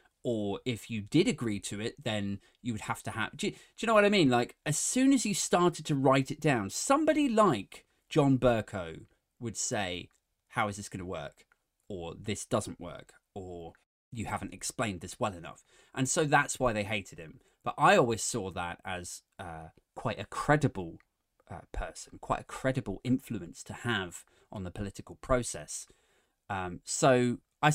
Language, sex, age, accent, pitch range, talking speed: English, male, 20-39, British, 100-145 Hz, 185 wpm